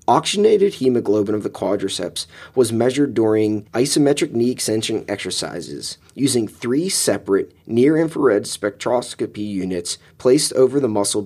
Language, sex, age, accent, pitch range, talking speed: English, male, 30-49, American, 95-150 Hz, 110 wpm